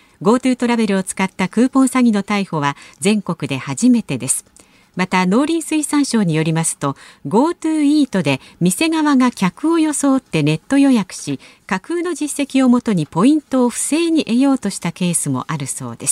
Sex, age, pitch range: female, 50-69, 165-255 Hz